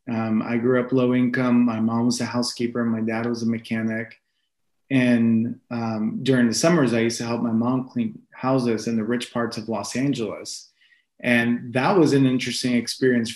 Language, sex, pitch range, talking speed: English, male, 115-130 Hz, 195 wpm